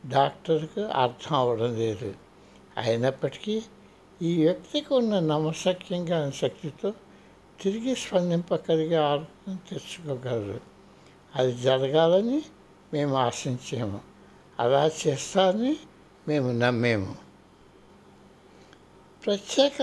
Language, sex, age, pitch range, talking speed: Telugu, male, 60-79, 135-195 Hz, 75 wpm